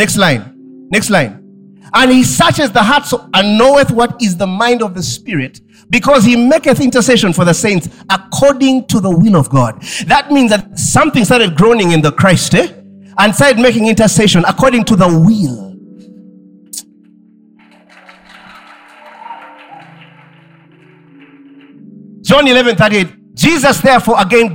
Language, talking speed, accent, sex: English, 140 wpm, South African, male